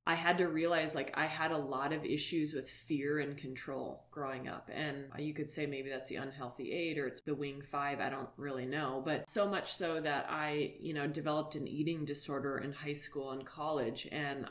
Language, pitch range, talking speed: English, 140-160 Hz, 220 wpm